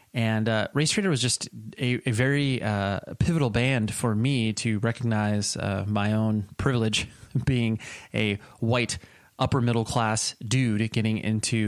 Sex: male